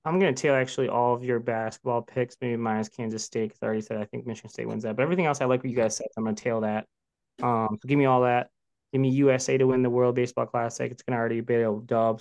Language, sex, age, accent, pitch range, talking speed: English, male, 20-39, American, 115-135 Hz, 285 wpm